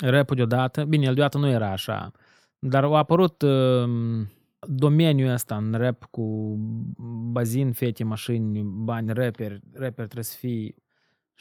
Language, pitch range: Romanian, 110-135 Hz